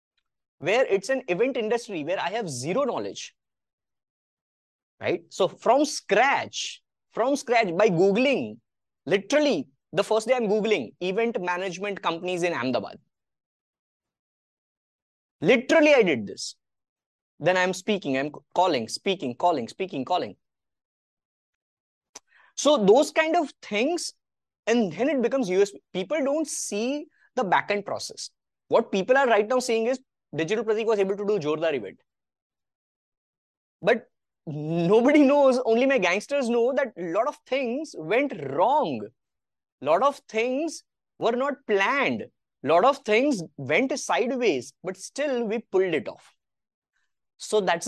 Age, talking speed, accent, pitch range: 20-39, 135 wpm, Indian, 180-275 Hz